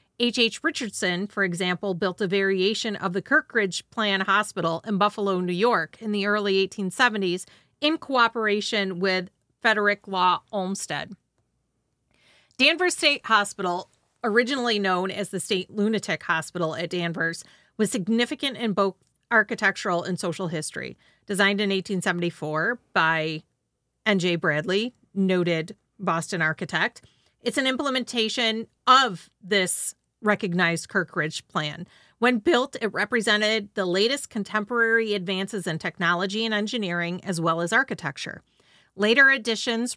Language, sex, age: English, female, 40-59